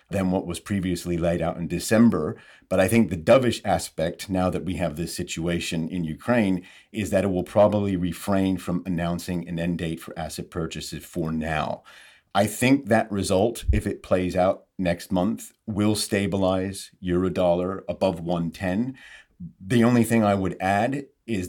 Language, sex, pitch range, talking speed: English, male, 85-100 Hz, 175 wpm